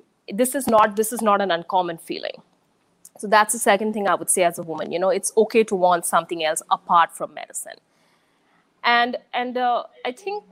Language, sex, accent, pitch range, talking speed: English, female, Indian, 200-265 Hz, 205 wpm